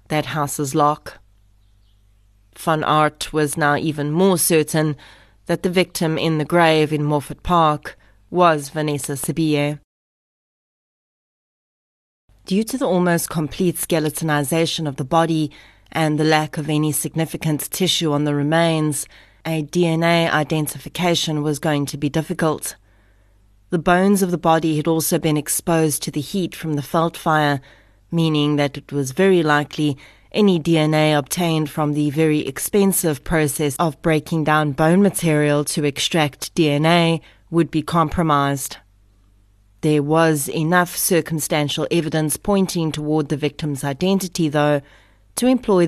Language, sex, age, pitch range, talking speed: English, female, 30-49, 145-165 Hz, 135 wpm